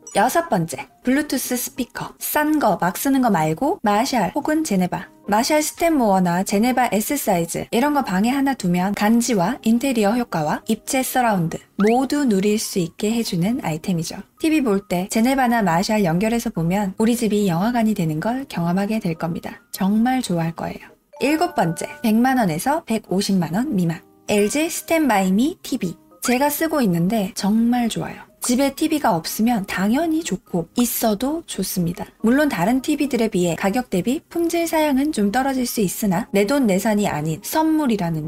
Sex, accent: female, native